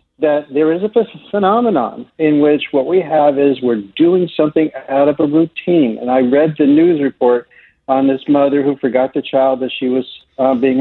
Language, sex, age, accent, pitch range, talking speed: English, male, 60-79, American, 135-165 Hz, 200 wpm